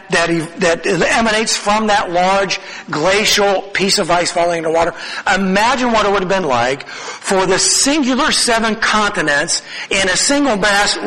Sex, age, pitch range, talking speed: male, 50-69, 170-220 Hz, 150 wpm